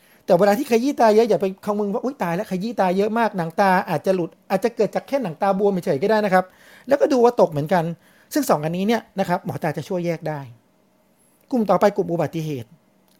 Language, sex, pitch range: Thai, male, 165-210 Hz